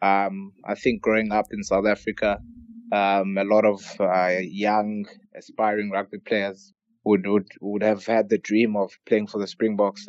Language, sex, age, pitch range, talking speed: English, male, 20-39, 100-115 Hz, 175 wpm